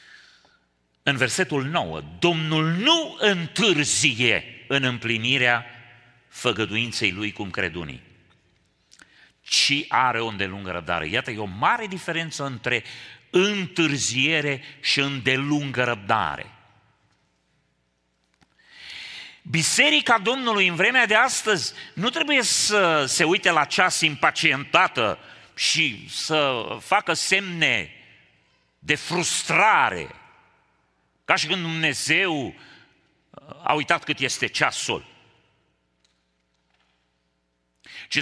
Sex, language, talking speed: male, Romanian, 90 wpm